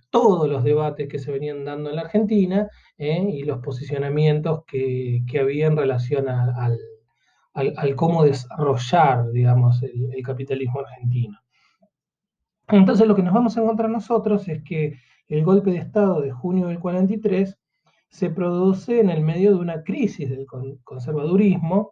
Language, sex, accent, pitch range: Spanish, male, Argentinian, 135-195 Hz